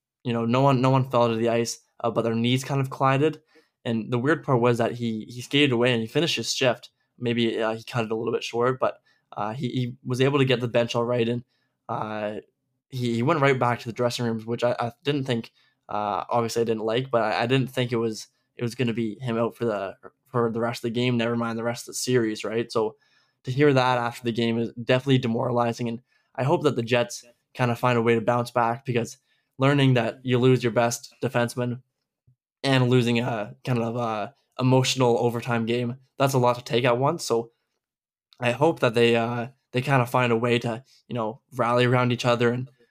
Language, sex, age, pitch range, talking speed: English, male, 20-39, 115-130 Hz, 240 wpm